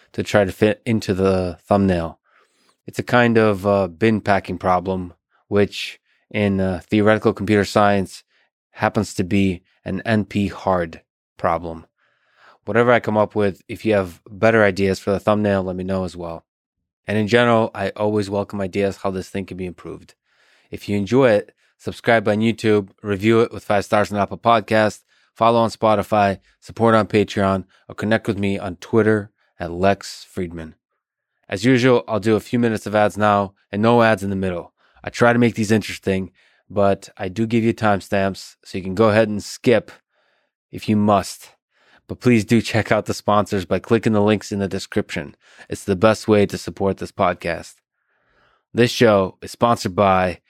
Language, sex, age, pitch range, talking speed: English, male, 20-39, 95-110 Hz, 180 wpm